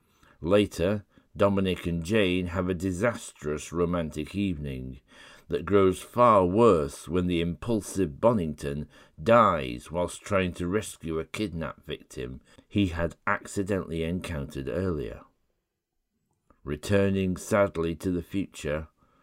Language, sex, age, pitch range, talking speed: English, male, 60-79, 80-100 Hz, 110 wpm